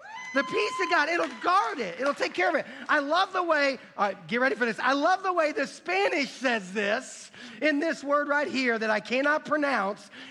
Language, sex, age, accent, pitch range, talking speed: English, male, 40-59, American, 215-295 Hz, 225 wpm